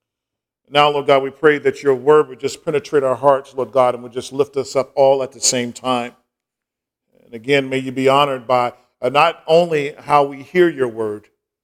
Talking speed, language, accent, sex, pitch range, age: 205 wpm, English, American, male, 125-170 Hz, 50-69